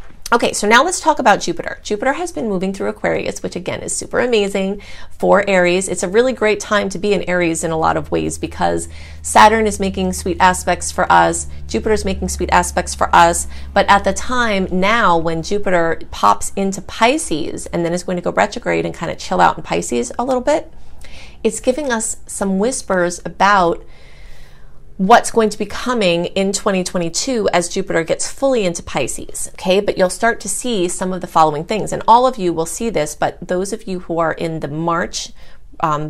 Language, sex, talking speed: English, female, 205 wpm